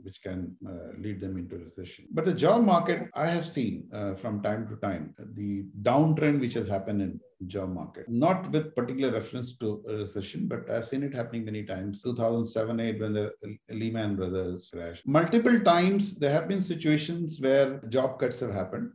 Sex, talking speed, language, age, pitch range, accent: male, 185 wpm, English, 50-69, 110-170 Hz, Indian